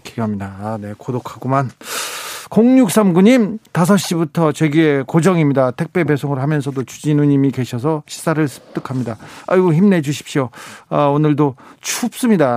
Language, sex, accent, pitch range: Korean, male, native, 125-160 Hz